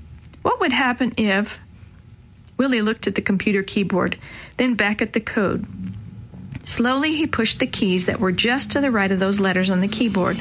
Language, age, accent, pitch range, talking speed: English, 40-59, American, 190-255 Hz, 185 wpm